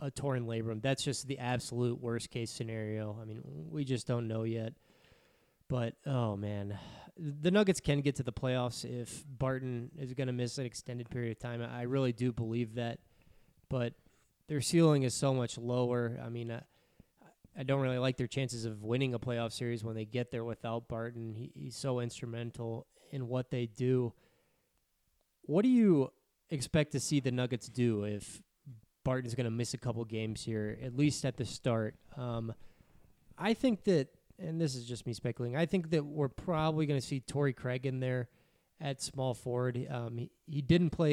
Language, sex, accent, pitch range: English, male, American, 120-140 Hz